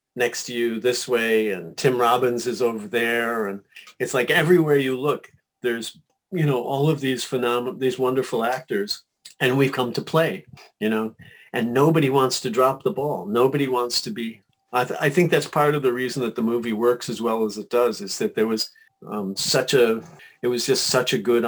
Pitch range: 115-140 Hz